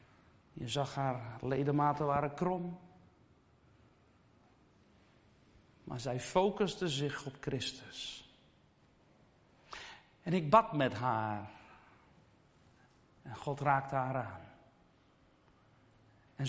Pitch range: 130-155 Hz